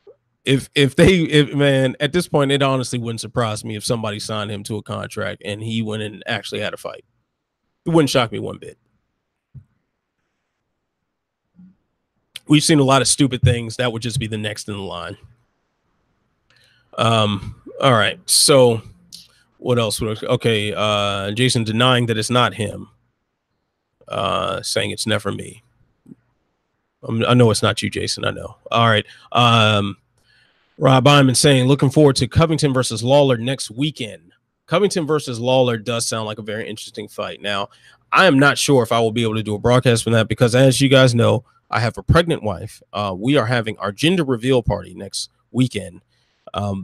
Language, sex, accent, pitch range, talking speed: English, male, American, 105-130 Hz, 180 wpm